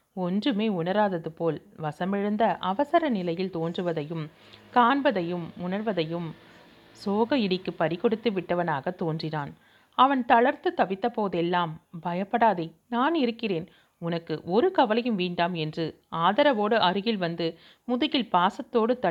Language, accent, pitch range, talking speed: Tamil, native, 170-235 Hz, 95 wpm